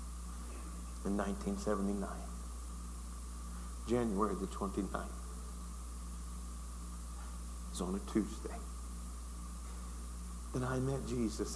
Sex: male